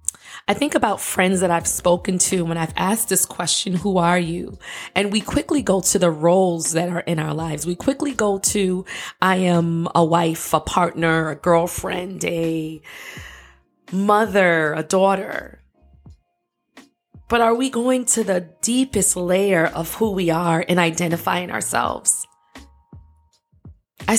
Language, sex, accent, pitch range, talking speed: English, female, American, 165-195 Hz, 150 wpm